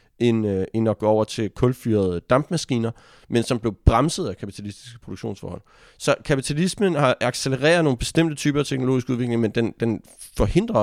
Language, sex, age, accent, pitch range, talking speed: Danish, male, 30-49, native, 105-130 Hz, 160 wpm